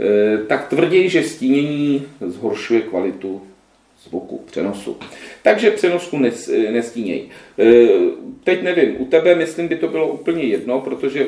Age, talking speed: 40-59, 120 wpm